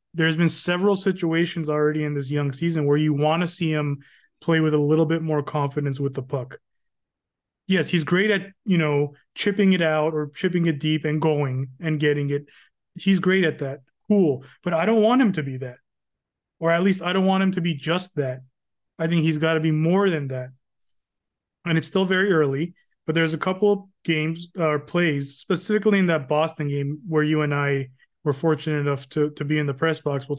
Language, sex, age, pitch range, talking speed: English, male, 20-39, 145-180 Hz, 215 wpm